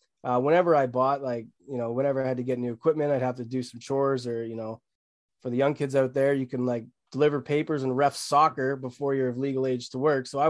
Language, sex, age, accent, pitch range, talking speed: English, male, 20-39, American, 125-145 Hz, 265 wpm